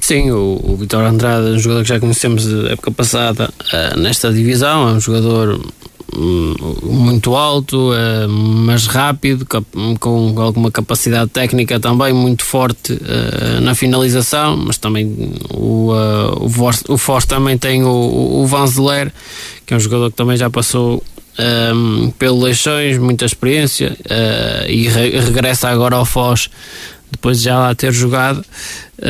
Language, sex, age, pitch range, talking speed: Portuguese, male, 20-39, 115-135 Hz, 150 wpm